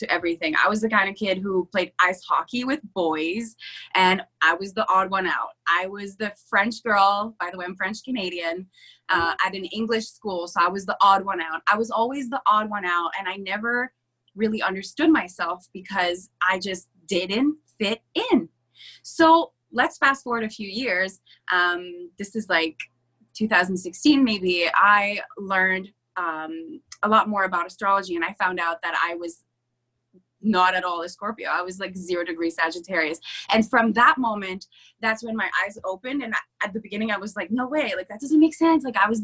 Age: 20-39